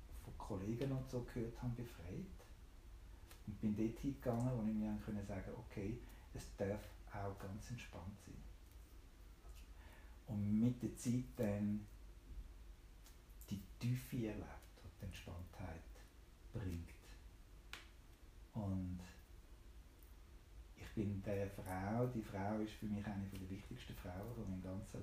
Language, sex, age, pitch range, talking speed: German, male, 60-79, 85-110 Hz, 120 wpm